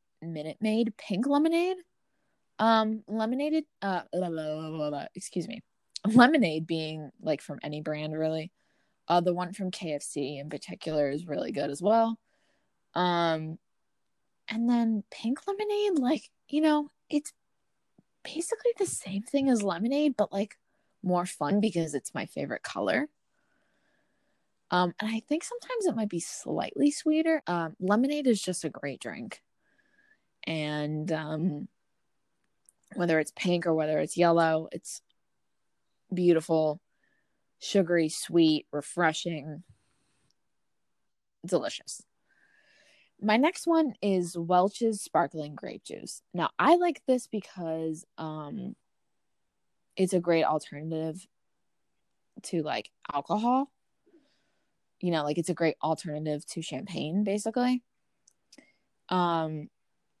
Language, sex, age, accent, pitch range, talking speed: English, female, 20-39, American, 160-245 Hz, 120 wpm